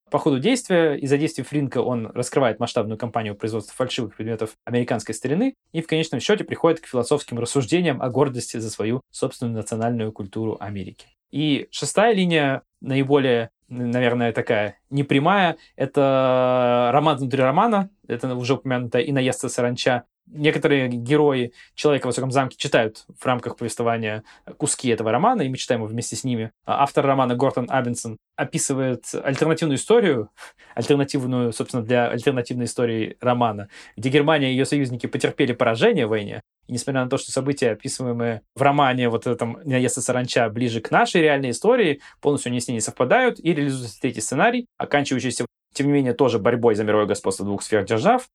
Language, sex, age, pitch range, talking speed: Russian, male, 20-39, 120-145 Hz, 160 wpm